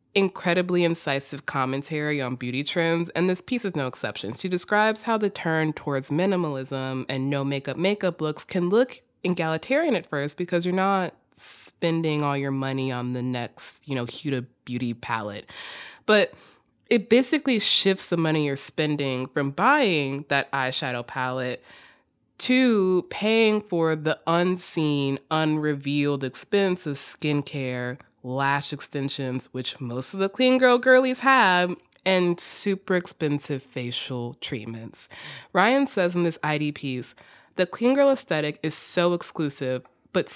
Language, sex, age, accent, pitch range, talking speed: English, female, 20-39, American, 140-200 Hz, 140 wpm